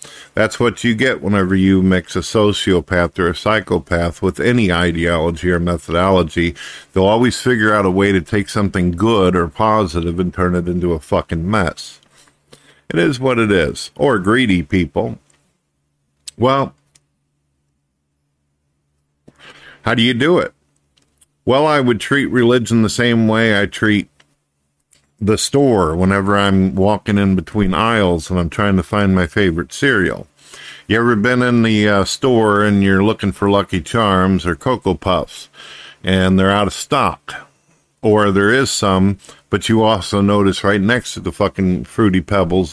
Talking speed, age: 155 wpm, 50-69